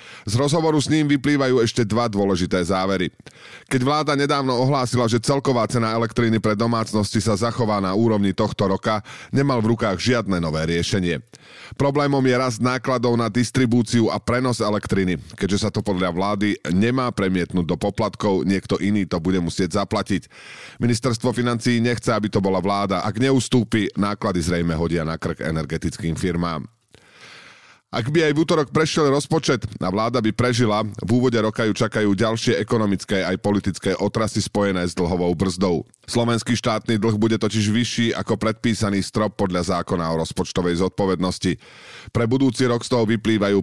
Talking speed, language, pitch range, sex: 160 wpm, Slovak, 95-120 Hz, male